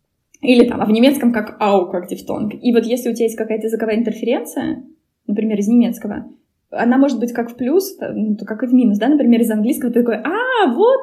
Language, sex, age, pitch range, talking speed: Russian, female, 20-39, 210-270 Hz, 220 wpm